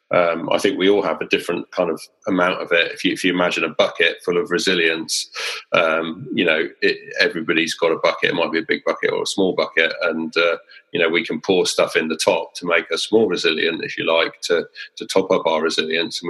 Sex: male